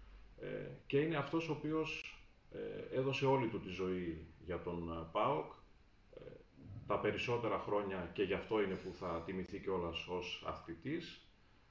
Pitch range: 95-120 Hz